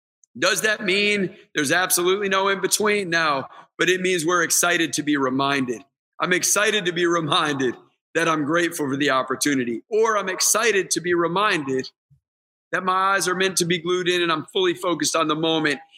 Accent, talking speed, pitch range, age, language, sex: American, 190 wpm, 160-210 Hz, 40-59, English, male